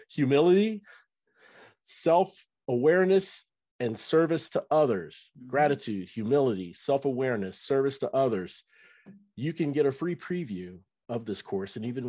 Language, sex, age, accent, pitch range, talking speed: English, male, 50-69, American, 95-135 Hz, 115 wpm